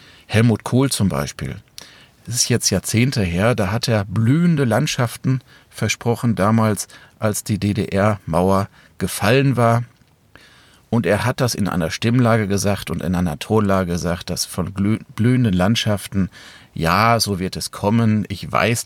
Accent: German